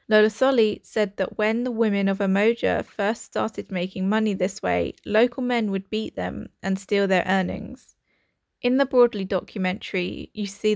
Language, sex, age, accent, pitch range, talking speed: English, female, 20-39, British, 195-225 Hz, 165 wpm